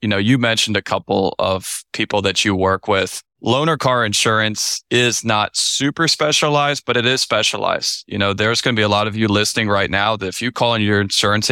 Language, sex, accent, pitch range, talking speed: English, male, American, 105-130 Hz, 225 wpm